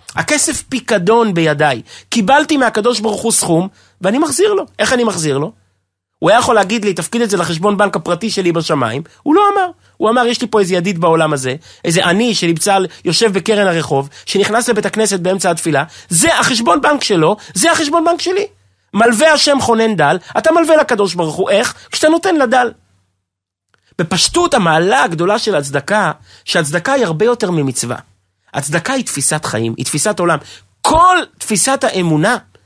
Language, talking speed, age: Hebrew, 165 wpm, 30-49